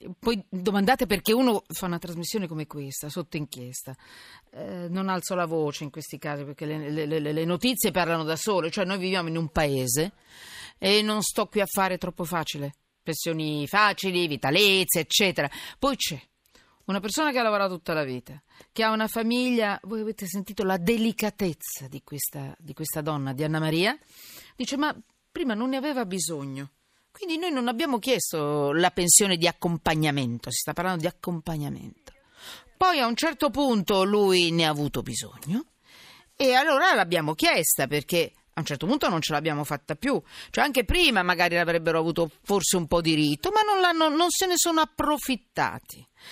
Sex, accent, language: female, native, Italian